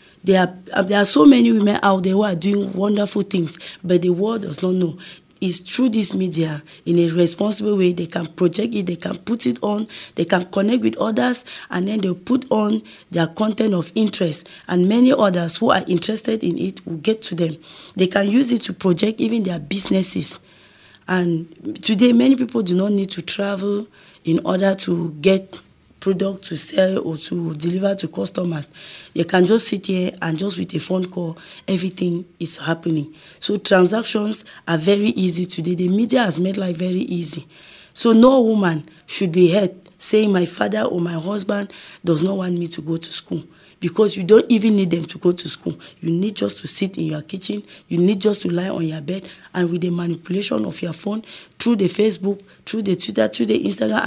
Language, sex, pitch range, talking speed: French, female, 170-205 Hz, 200 wpm